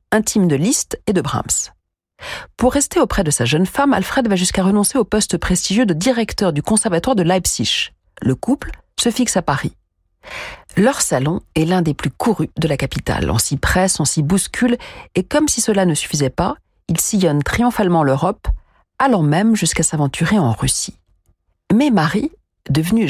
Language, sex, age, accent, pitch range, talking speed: French, female, 40-59, French, 140-215 Hz, 175 wpm